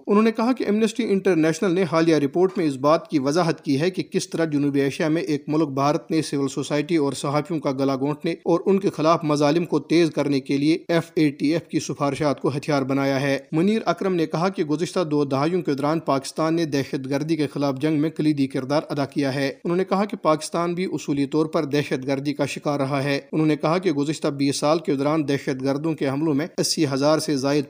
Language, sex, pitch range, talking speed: Urdu, male, 145-165 Hz, 240 wpm